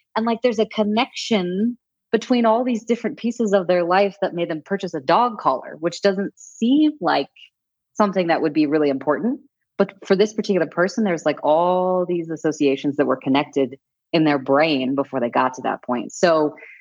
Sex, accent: female, American